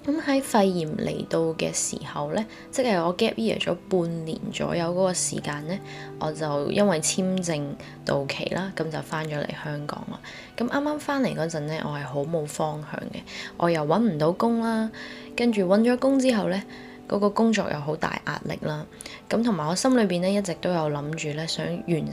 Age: 20-39